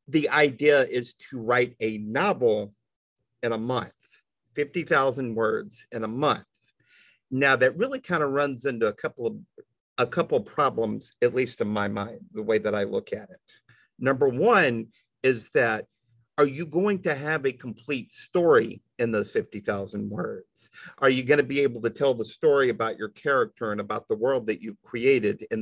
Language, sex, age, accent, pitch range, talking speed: English, male, 50-69, American, 120-190 Hz, 180 wpm